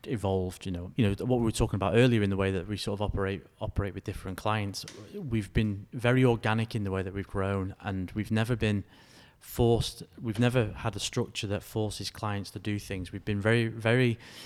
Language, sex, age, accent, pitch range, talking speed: English, male, 30-49, British, 100-115 Hz, 220 wpm